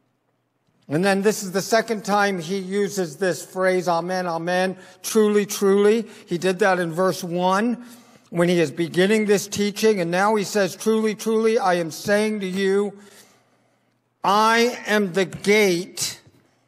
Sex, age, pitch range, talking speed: male, 60-79, 185-220 Hz, 150 wpm